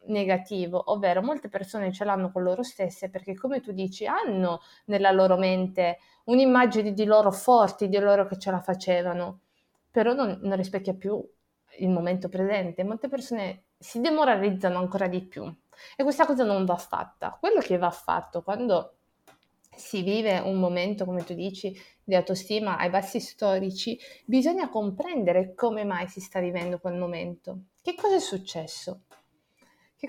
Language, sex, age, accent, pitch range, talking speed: Italian, female, 20-39, native, 185-245 Hz, 160 wpm